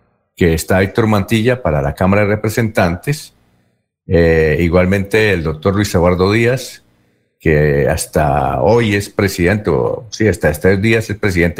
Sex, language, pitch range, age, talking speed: male, Spanish, 85-115 Hz, 50-69, 150 wpm